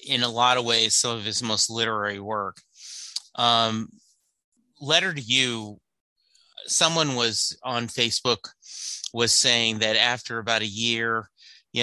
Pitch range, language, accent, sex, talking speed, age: 110-135 Hz, English, American, male, 135 wpm, 30-49